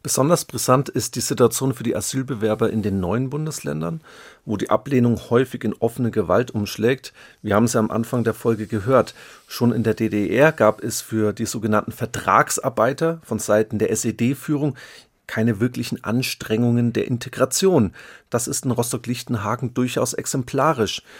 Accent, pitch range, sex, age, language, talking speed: German, 115-140 Hz, male, 40-59, German, 155 wpm